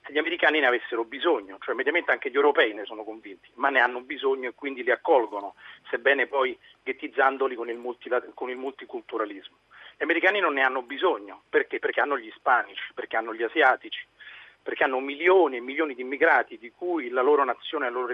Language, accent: Italian, native